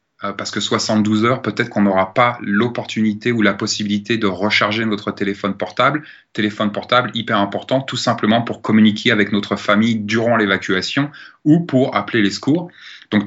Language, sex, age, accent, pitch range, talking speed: French, male, 20-39, French, 105-125 Hz, 165 wpm